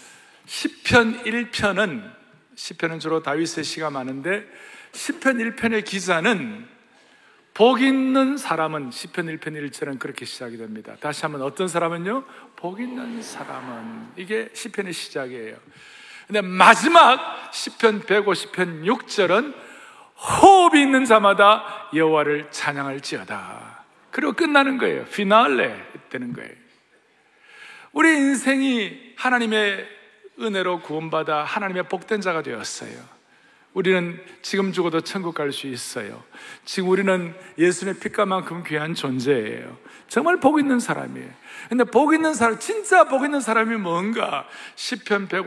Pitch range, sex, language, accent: 160-245 Hz, male, Korean, native